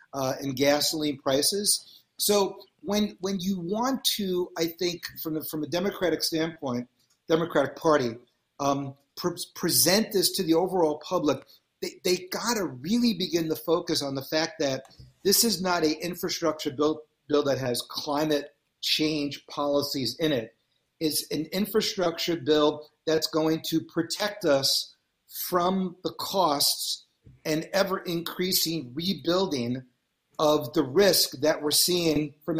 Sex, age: male, 40-59